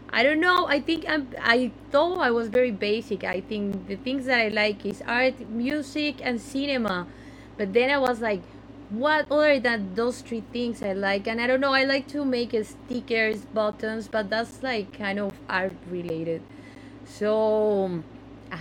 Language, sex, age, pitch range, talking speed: English, female, 20-39, 200-260 Hz, 175 wpm